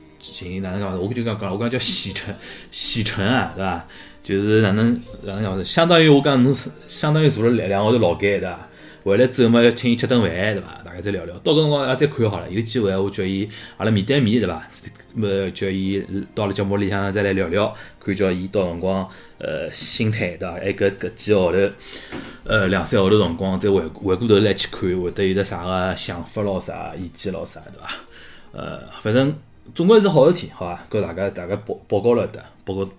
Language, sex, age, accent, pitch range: Chinese, male, 20-39, native, 95-135 Hz